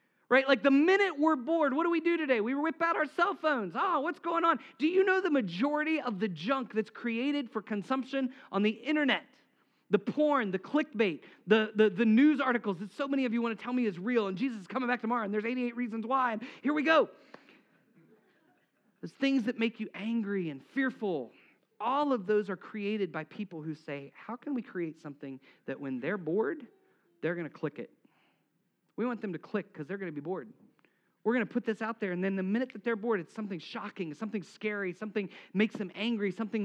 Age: 40-59